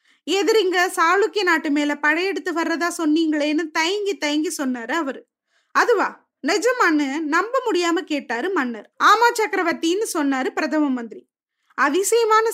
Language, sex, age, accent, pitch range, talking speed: Tamil, female, 20-39, native, 295-385 Hz, 110 wpm